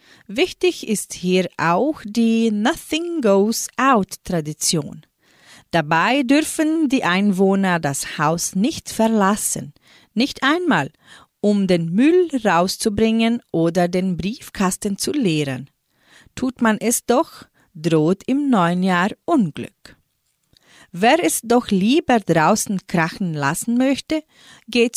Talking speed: 110 wpm